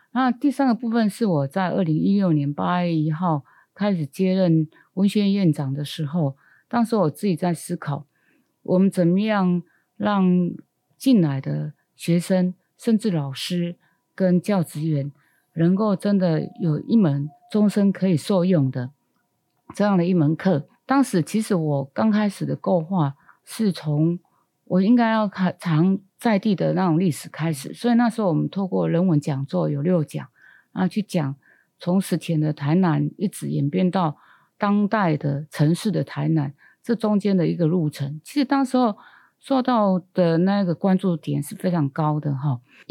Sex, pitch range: female, 155-200 Hz